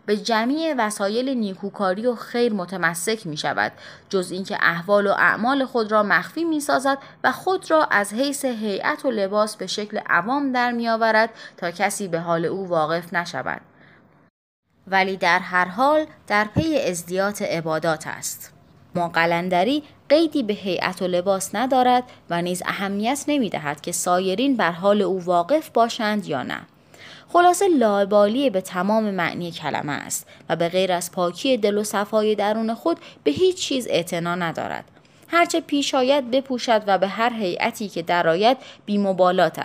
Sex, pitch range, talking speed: female, 180-250 Hz, 155 wpm